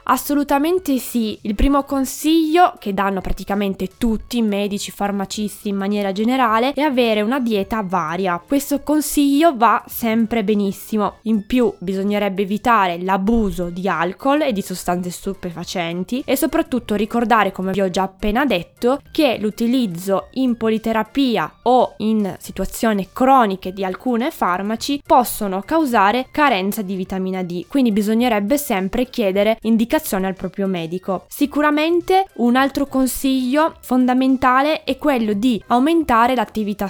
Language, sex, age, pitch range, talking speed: Italian, female, 20-39, 195-265 Hz, 130 wpm